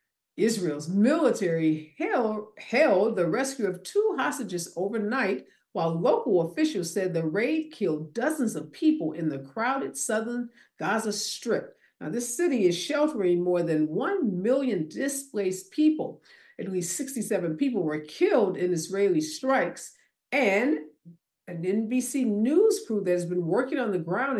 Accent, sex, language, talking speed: American, female, English, 145 wpm